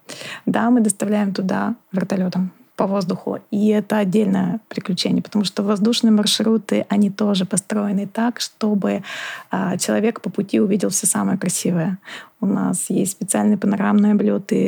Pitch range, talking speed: 190-215 Hz, 140 wpm